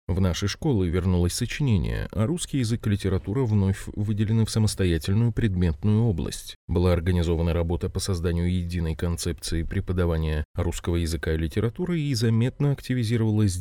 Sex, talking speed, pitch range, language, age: male, 135 wpm, 90-115 Hz, Russian, 20-39